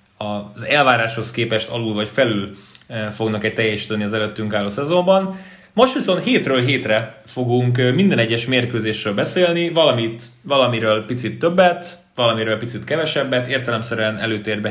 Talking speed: 125 wpm